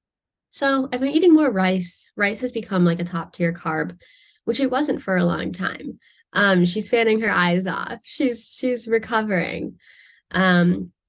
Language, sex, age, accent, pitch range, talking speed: English, female, 10-29, American, 180-255 Hz, 170 wpm